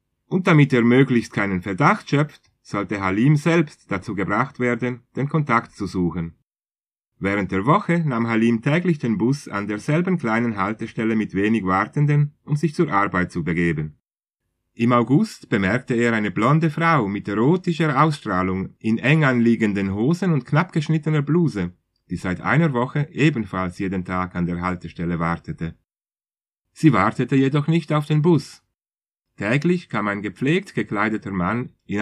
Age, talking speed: 30-49, 150 wpm